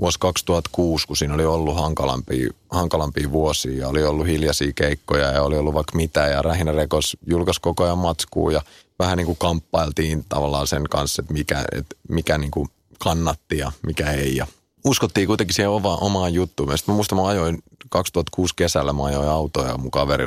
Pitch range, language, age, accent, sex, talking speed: 75-90 Hz, Finnish, 30-49, native, male, 180 wpm